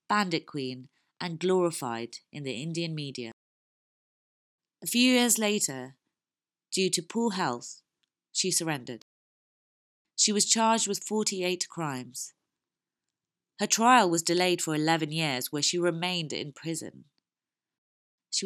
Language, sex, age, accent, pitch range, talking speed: English, female, 30-49, British, 145-210 Hz, 120 wpm